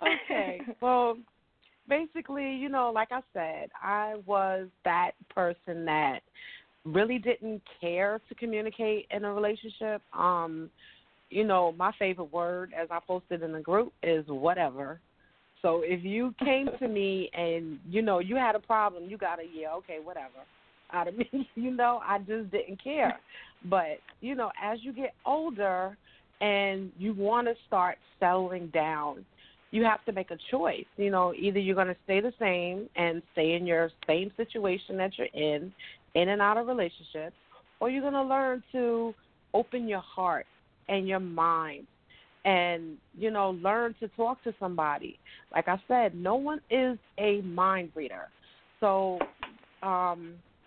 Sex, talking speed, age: female, 160 wpm, 40-59